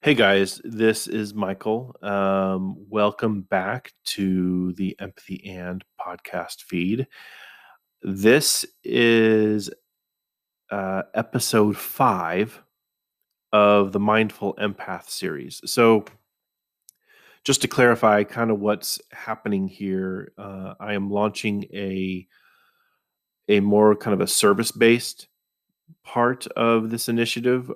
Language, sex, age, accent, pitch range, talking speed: English, male, 30-49, American, 95-110 Hz, 100 wpm